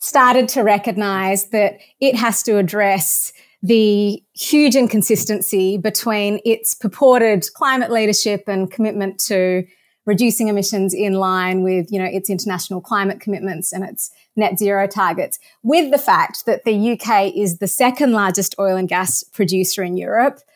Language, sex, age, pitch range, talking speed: English, female, 30-49, 190-225 Hz, 150 wpm